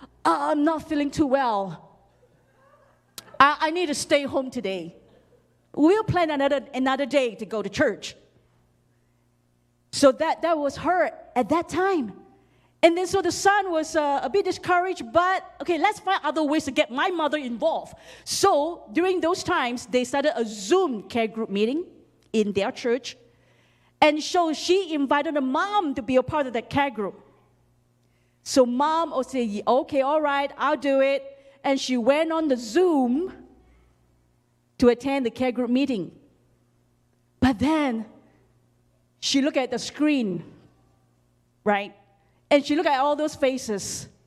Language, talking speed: English, 155 wpm